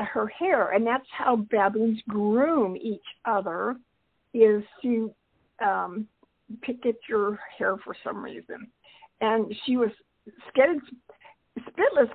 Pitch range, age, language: 210-265 Hz, 50-69, English